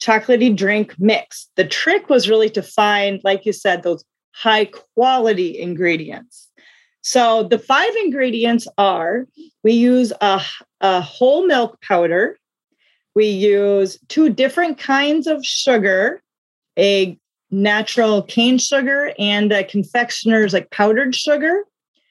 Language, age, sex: English, 30-49, female